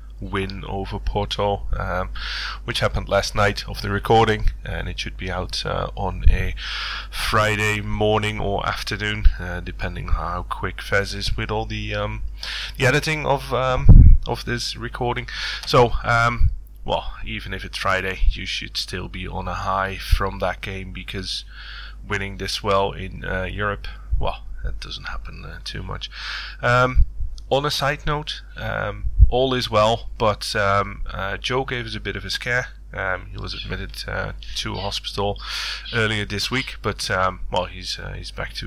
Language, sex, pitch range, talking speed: English, male, 95-115 Hz, 170 wpm